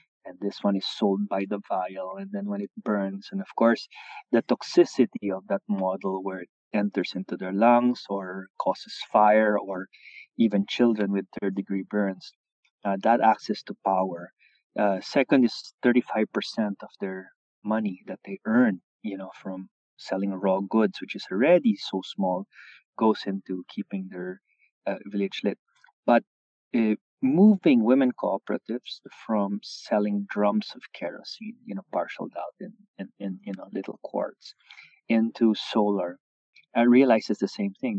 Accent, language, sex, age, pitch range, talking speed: Filipino, English, male, 30-49, 95-130 Hz, 155 wpm